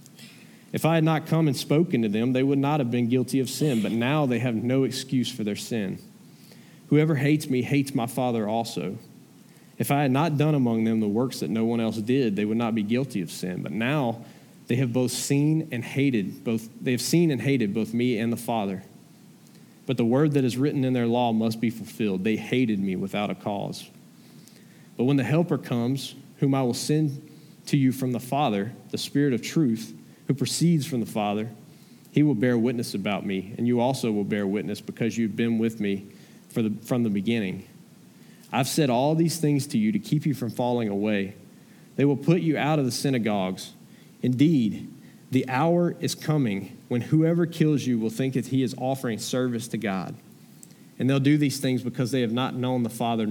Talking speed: 210 wpm